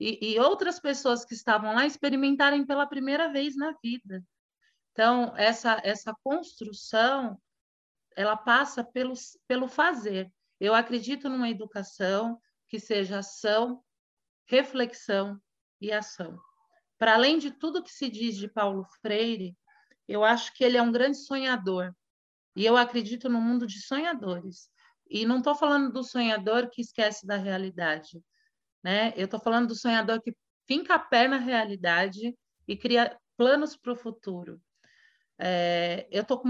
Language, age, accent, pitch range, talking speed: Portuguese, 40-59, Brazilian, 205-255 Hz, 145 wpm